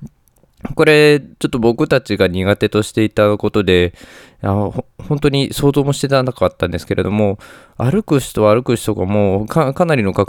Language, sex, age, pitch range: Japanese, male, 20-39, 100-135 Hz